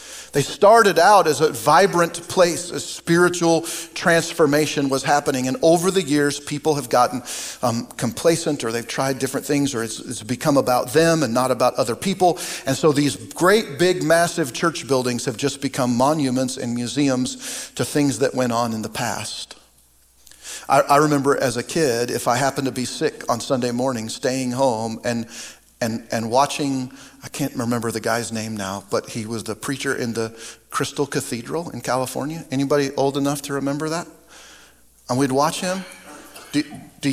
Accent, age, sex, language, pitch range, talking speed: American, 50-69, male, English, 120-150 Hz, 180 wpm